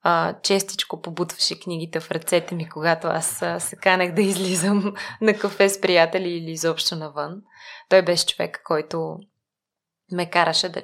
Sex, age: female, 20-39